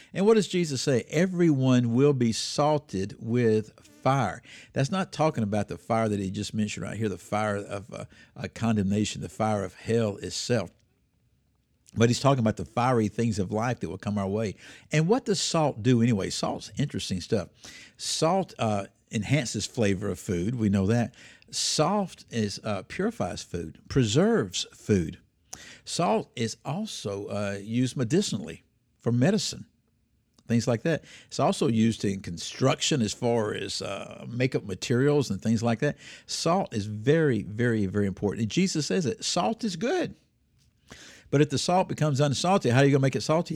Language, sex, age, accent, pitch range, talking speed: English, male, 60-79, American, 110-150 Hz, 175 wpm